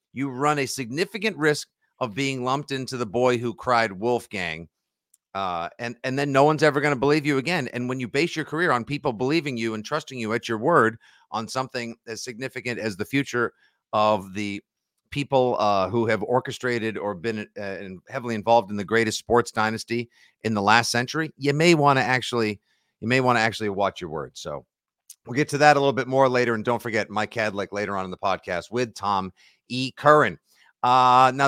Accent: American